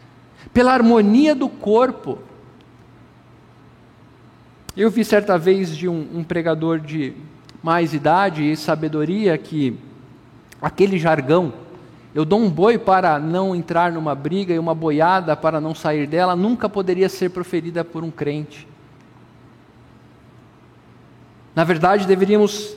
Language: Portuguese